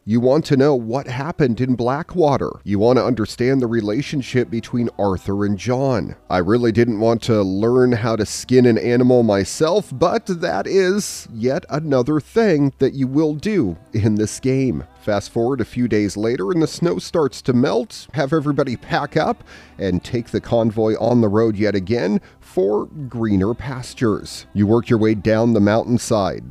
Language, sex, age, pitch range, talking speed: English, male, 40-59, 105-135 Hz, 175 wpm